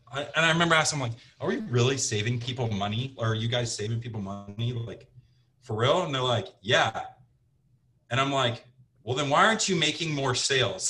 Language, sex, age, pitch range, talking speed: English, male, 30-49, 115-135 Hz, 200 wpm